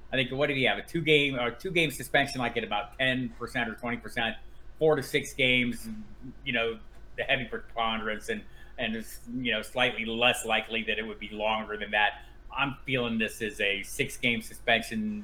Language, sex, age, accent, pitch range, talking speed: English, male, 30-49, American, 110-135 Hz, 195 wpm